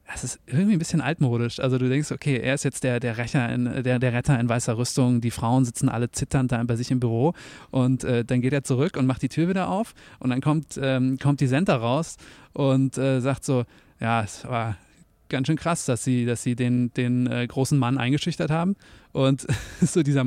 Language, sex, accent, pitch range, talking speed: German, male, German, 125-155 Hz, 230 wpm